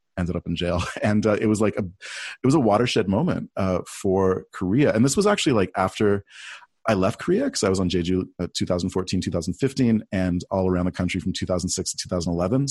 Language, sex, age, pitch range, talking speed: English, male, 30-49, 95-120 Hz, 210 wpm